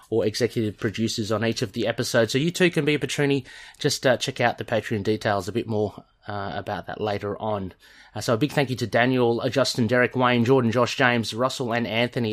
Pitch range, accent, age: 110-140 Hz, Australian, 30-49